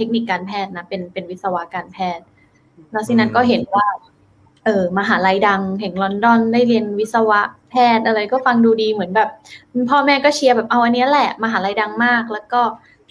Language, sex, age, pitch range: Thai, female, 20-39, 195-245 Hz